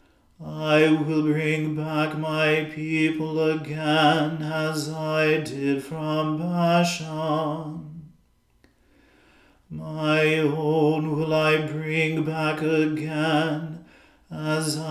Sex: male